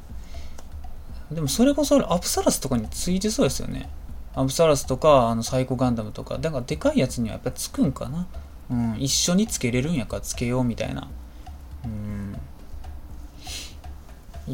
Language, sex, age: Japanese, male, 20-39